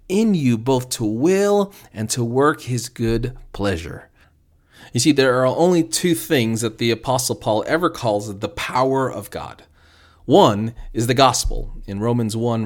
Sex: male